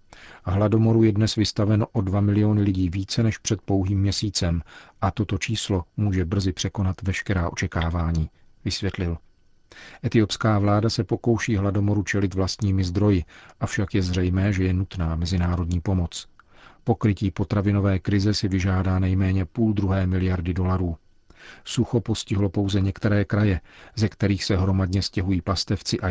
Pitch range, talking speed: 95-105 Hz, 140 wpm